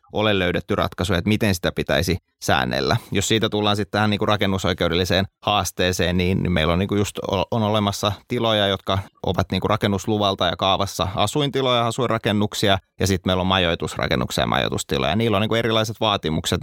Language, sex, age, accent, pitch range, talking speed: Finnish, male, 30-49, native, 90-105 Hz, 140 wpm